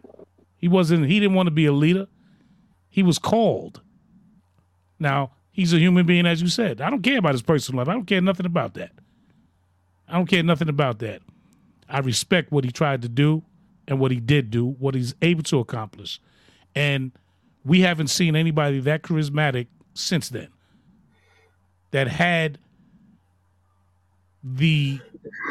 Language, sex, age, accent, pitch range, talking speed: English, male, 30-49, American, 125-180 Hz, 160 wpm